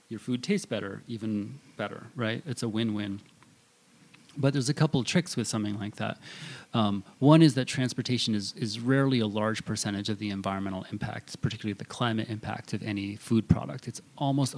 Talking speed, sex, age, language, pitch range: 185 wpm, male, 30-49, English, 105-125 Hz